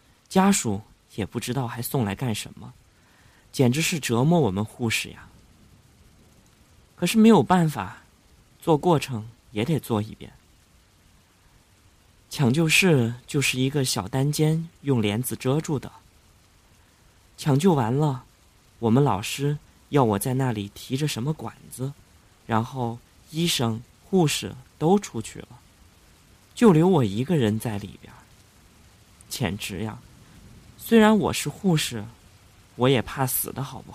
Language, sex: Chinese, male